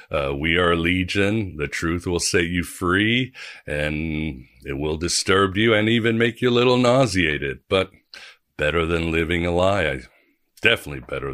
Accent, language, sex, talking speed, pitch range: American, English, male, 170 wpm, 75-90 Hz